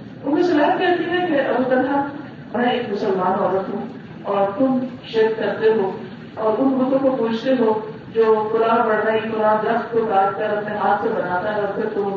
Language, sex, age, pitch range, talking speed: Urdu, female, 40-59, 195-255 Hz, 190 wpm